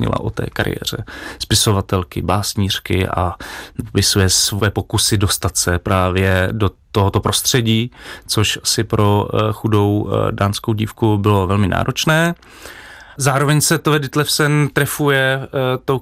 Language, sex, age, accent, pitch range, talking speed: Czech, male, 30-49, native, 100-115 Hz, 115 wpm